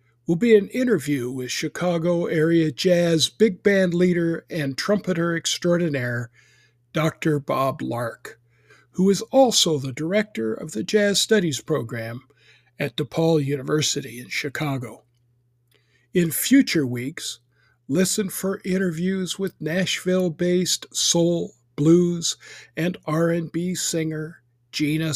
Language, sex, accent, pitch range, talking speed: English, male, American, 130-170 Hz, 115 wpm